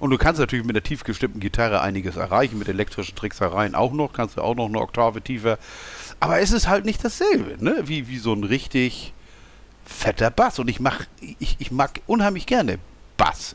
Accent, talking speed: German, 200 wpm